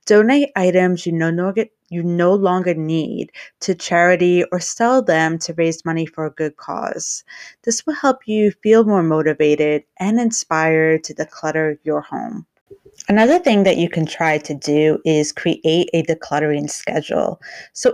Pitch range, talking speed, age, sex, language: 160-215 Hz, 150 wpm, 30-49, female, English